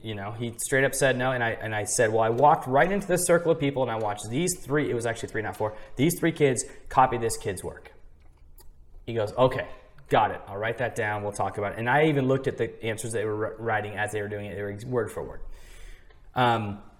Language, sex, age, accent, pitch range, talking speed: English, male, 20-39, American, 105-140 Hz, 260 wpm